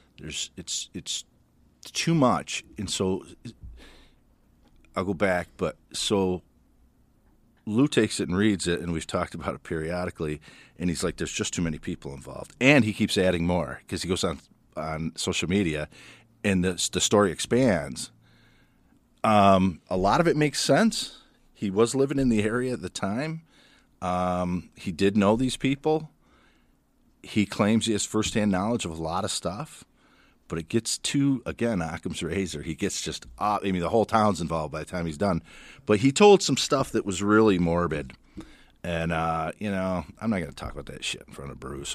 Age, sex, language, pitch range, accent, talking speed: 40-59, male, English, 80-110 Hz, American, 185 wpm